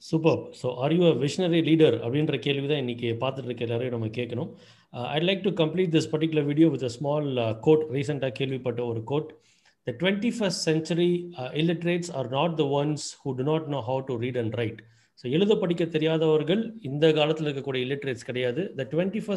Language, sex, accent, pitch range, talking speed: Tamil, male, native, 135-170 Hz, 185 wpm